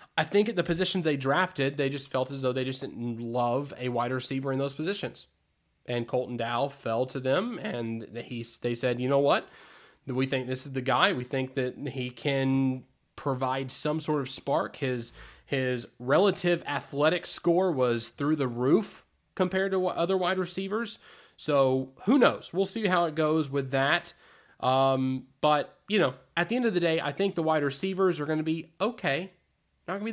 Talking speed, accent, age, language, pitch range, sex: 195 wpm, American, 20-39, English, 130-185 Hz, male